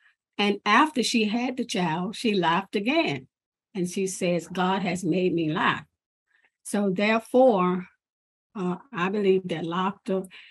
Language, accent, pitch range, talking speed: English, American, 175-205 Hz, 135 wpm